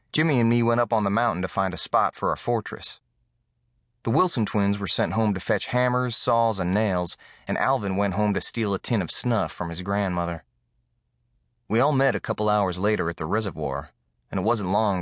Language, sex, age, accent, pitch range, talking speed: English, male, 30-49, American, 90-110 Hz, 215 wpm